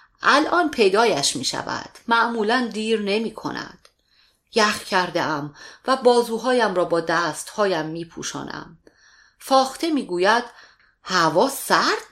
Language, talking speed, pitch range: Persian, 110 wpm, 170-230 Hz